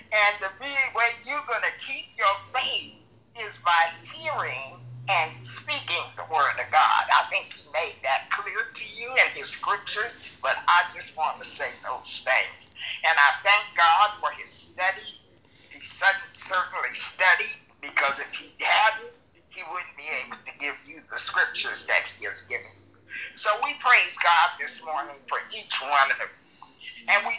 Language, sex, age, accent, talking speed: English, male, 50-69, American, 170 wpm